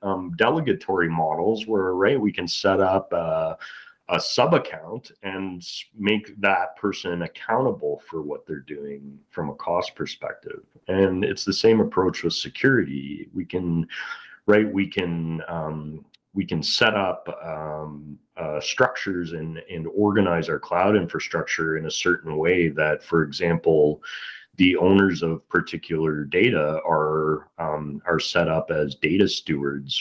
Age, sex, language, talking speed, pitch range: 30-49, male, English, 145 wpm, 75-95 Hz